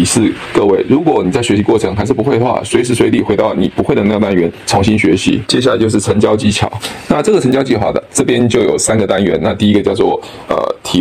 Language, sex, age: Chinese, male, 20-39